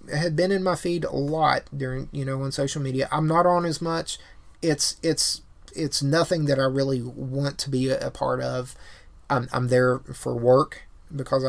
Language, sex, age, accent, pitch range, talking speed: English, male, 30-49, American, 130-175 Hz, 200 wpm